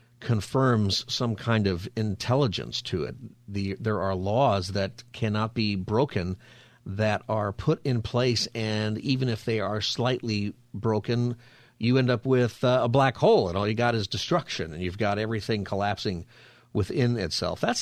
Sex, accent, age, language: male, American, 50-69, English